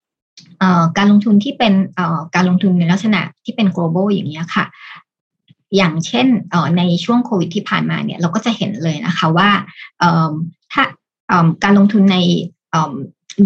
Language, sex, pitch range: Thai, male, 170-205 Hz